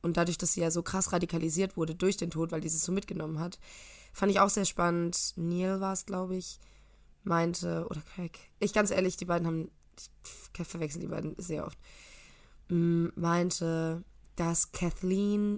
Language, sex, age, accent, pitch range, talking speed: German, female, 20-39, German, 160-185 Hz, 175 wpm